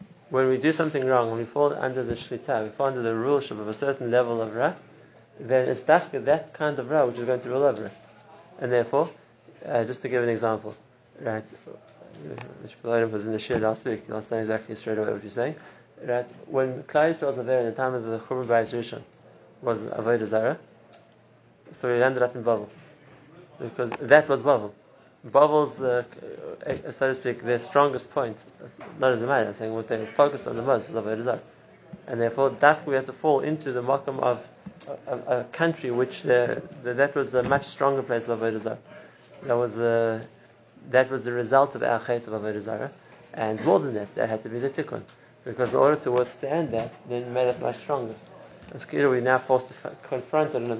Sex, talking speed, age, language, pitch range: male, 195 wpm, 30-49, English, 115-135 Hz